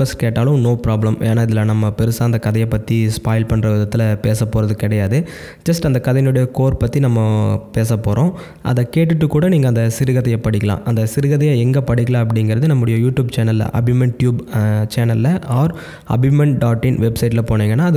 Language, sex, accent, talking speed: Tamil, male, native, 160 wpm